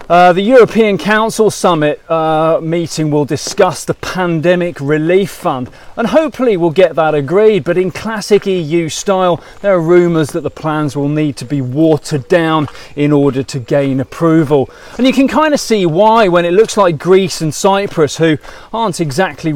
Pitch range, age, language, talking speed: 150-190 Hz, 30-49, English, 180 wpm